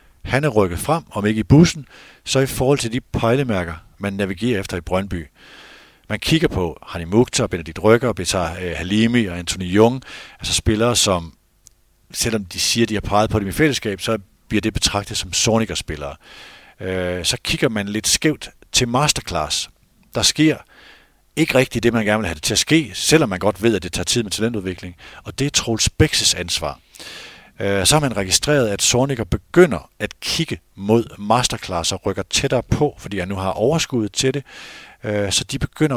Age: 50-69